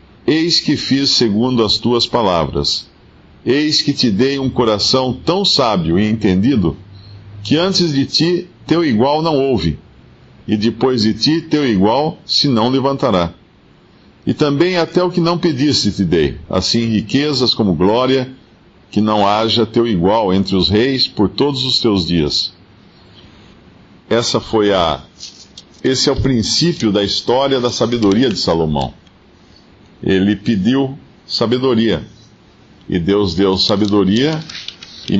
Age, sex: 50-69, male